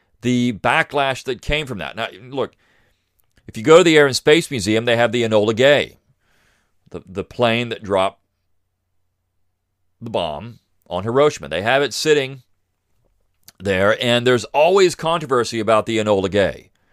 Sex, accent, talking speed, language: male, American, 155 wpm, English